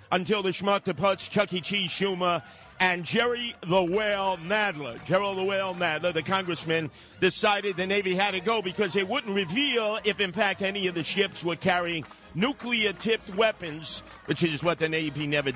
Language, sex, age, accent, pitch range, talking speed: English, male, 50-69, American, 170-215 Hz, 175 wpm